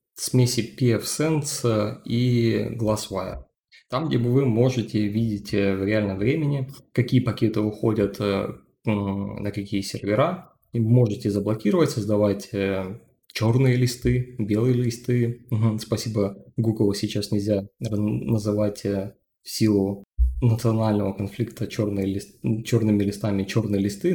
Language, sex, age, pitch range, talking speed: Russian, male, 20-39, 100-115 Hz, 95 wpm